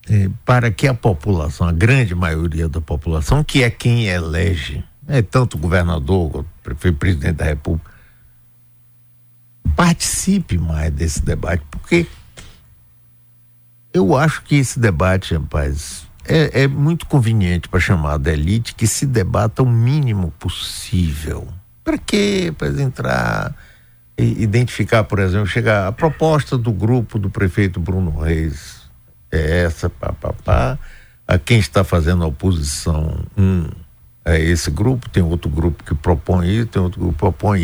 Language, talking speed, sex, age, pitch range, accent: Portuguese, 145 wpm, male, 60-79, 80-115 Hz, Brazilian